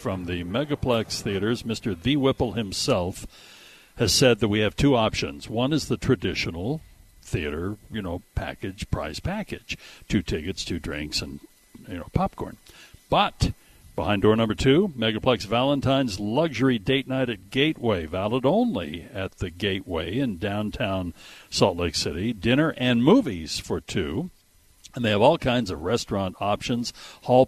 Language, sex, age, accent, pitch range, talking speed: English, male, 60-79, American, 100-135 Hz, 150 wpm